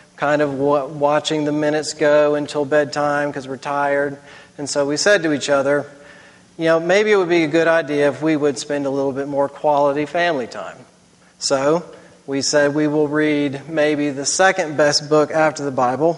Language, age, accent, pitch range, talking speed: English, 40-59, American, 145-170 Hz, 195 wpm